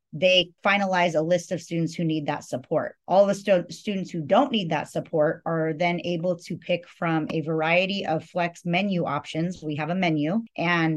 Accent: American